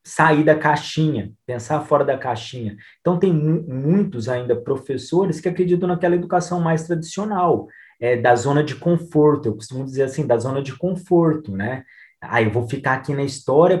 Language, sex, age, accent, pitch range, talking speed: Portuguese, male, 20-39, Brazilian, 115-165 Hz, 180 wpm